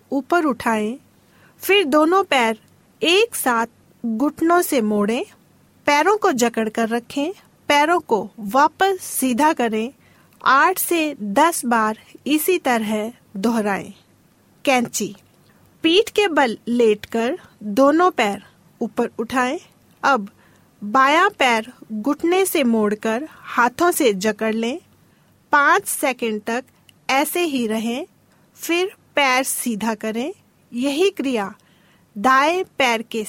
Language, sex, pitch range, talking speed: Hindi, female, 230-310 Hz, 110 wpm